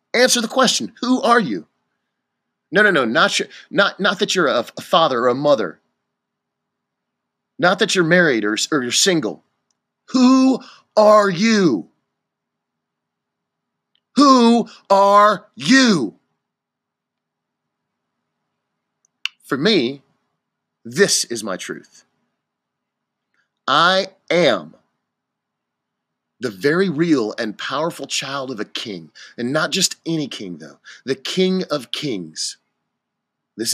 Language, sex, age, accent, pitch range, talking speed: English, male, 40-59, American, 130-205 Hz, 110 wpm